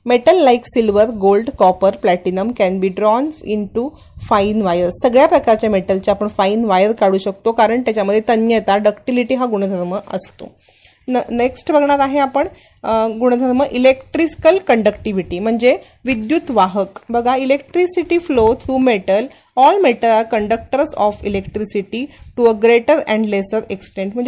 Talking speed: 135 wpm